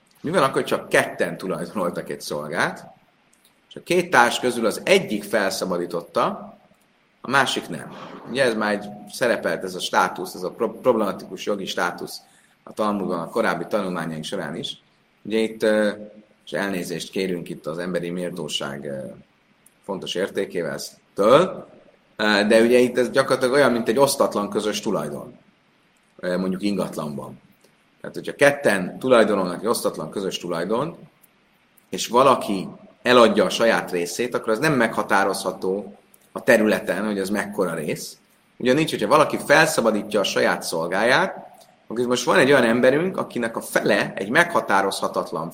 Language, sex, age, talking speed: Hungarian, male, 30-49, 140 wpm